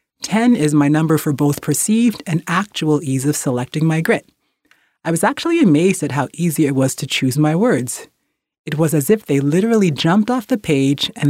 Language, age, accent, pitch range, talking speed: English, 30-49, American, 140-180 Hz, 200 wpm